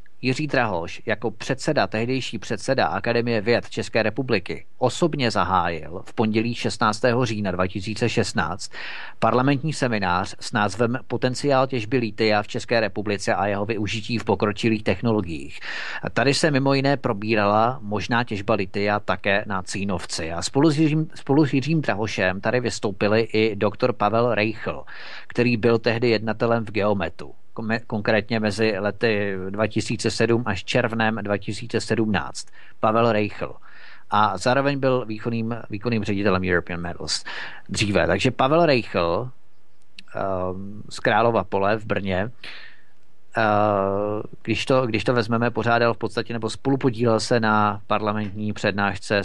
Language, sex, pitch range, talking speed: Czech, male, 105-120 Hz, 125 wpm